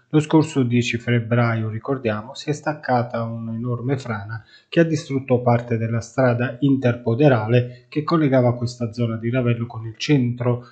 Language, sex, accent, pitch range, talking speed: Italian, male, native, 115-135 Hz, 145 wpm